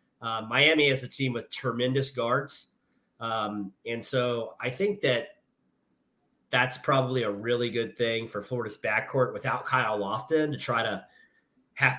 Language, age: English, 30-49